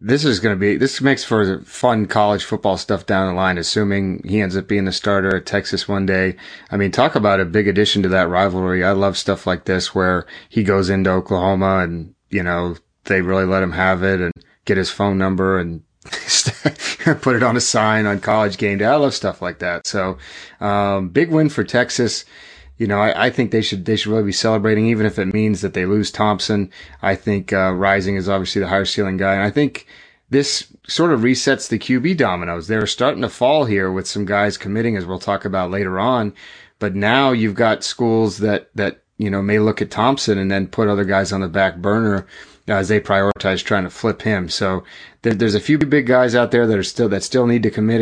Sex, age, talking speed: male, 30-49, 225 wpm